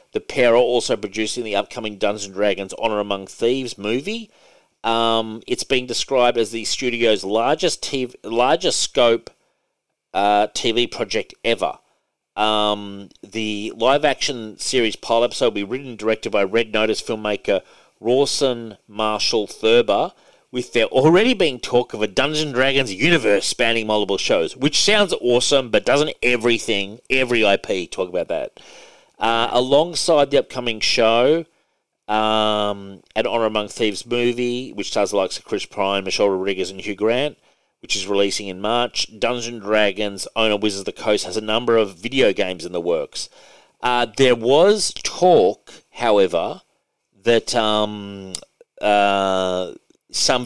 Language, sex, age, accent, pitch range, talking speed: English, male, 40-59, Australian, 100-120 Hz, 150 wpm